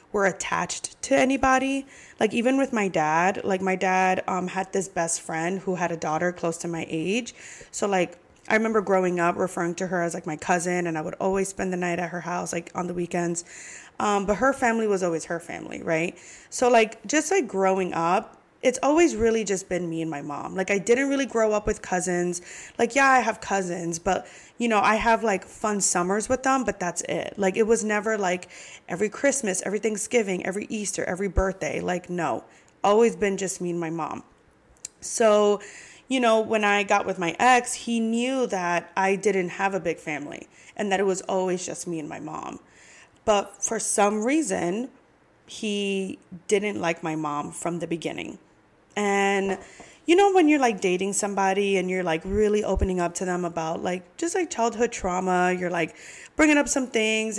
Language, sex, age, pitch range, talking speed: English, female, 20-39, 175-220 Hz, 200 wpm